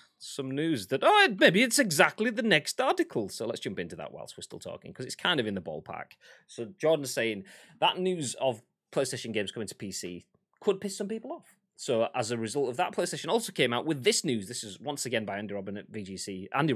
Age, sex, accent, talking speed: 30-49, male, British, 220 wpm